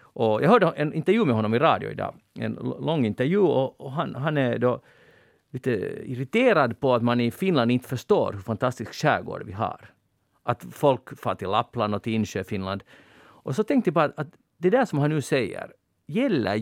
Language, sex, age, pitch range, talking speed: Swedish, male, 40-59, 115-165 Hz, 200 wpm